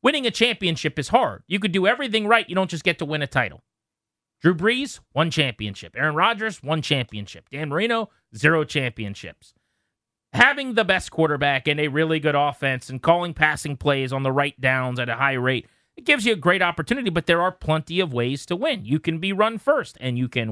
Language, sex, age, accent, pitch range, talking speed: English, male, 30-49, American, 130-180 Hz, 215 wpm